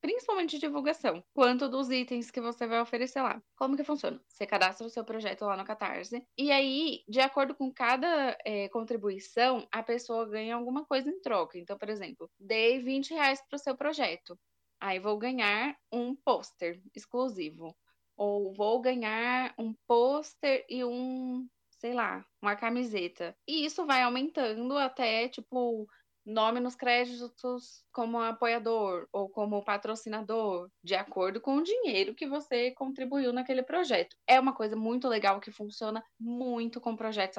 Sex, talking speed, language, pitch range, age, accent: female, 155 wpm, Portuguese, 215-265 Hz, 10-29, Brazilian